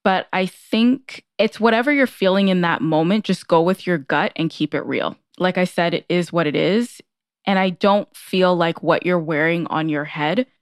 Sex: female